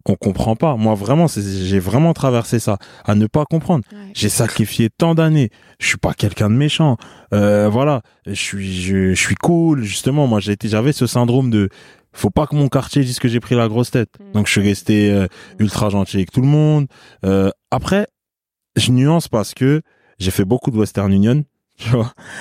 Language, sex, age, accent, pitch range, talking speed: French, male, 20-39, French, 100-125 Hz, 195 wpm